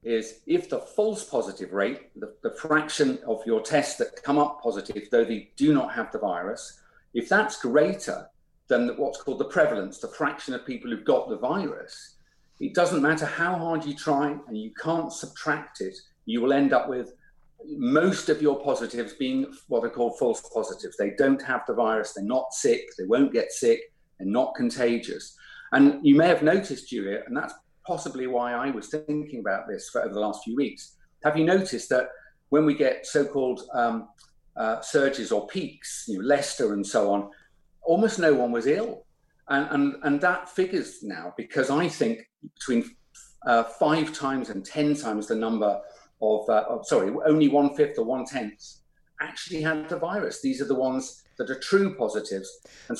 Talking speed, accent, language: 185 wpm, British, English